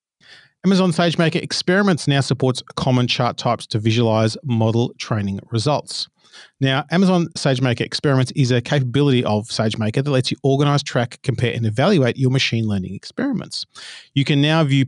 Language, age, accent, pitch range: English, 40-59, Australian, 115-145 Hz